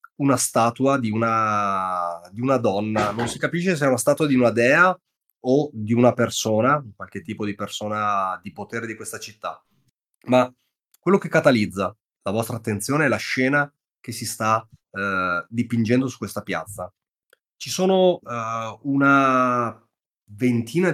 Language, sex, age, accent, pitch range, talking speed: Italian, male, 30-49, native, 105-135 Hz, 150 wpm